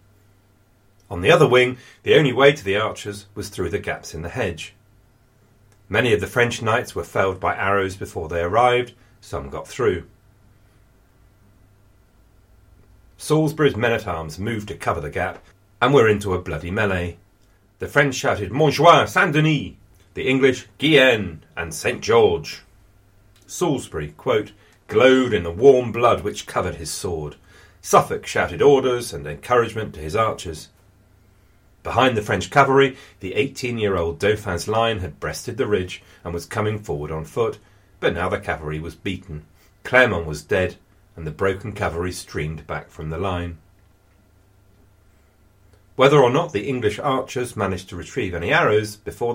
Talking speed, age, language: 150 wpm, 40-59, English